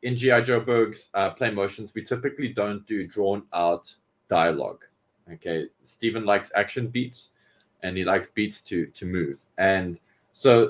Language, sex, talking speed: English, male, 150 wpm